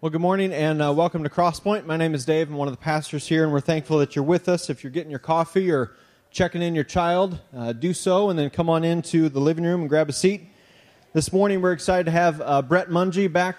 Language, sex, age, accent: English, male, 30-49, American